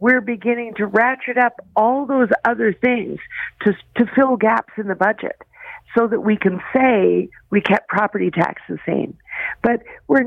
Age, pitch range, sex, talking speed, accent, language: 50-69, 185-230 Hz, female, 170 wpm, American, English